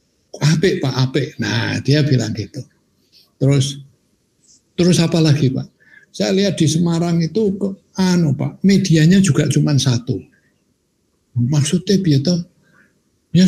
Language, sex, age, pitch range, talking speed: Indonesian, male, 60-79, 135-185 Hz, 120 wpm